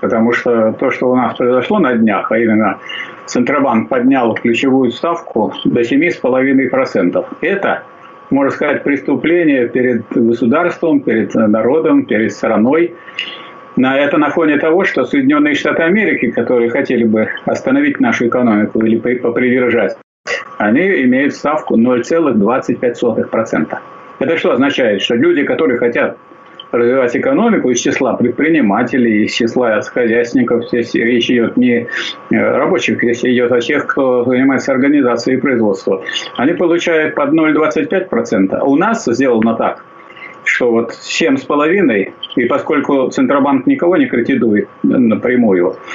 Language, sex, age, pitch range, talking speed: Russian, male, 50-69, 120-175 Hz, 125 wpm